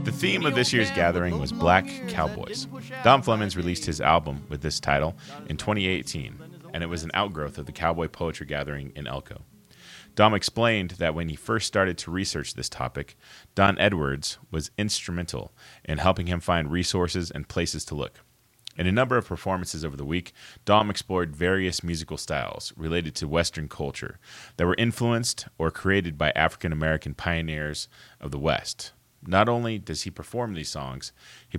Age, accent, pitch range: 30-49, American, 75-100 Hz